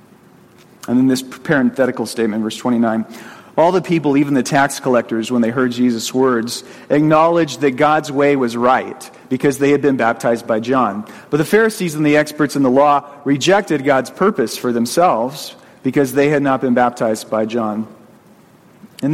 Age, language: 40-59, English